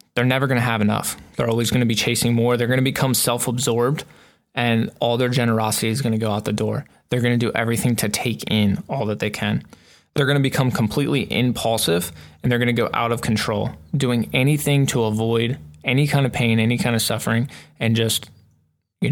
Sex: male